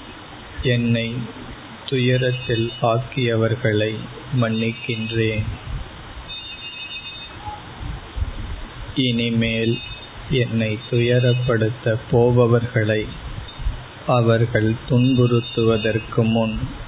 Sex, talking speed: male, 40 wpm